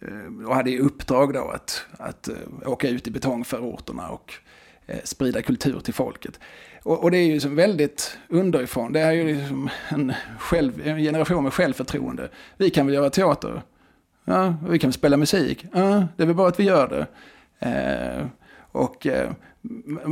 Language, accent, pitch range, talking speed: Swedish, native, 130-165 Hz, 175 wpm